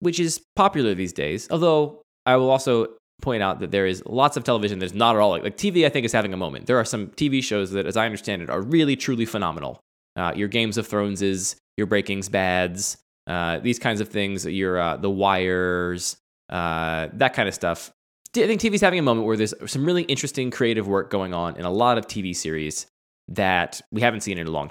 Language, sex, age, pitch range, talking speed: English, male, 20-39, 90-125 Hz, 230 wpm